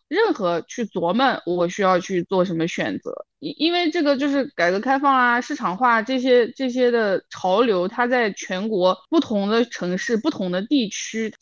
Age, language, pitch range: 20-39, Chinese, 185-285 Hz